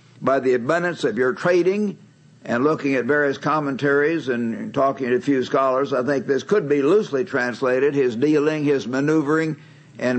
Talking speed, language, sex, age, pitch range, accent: 170 wpm, English, male, 60-79, 135-155 Hz, American